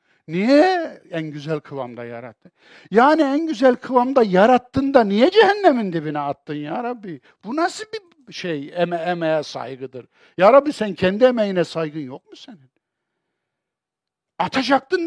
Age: 60-79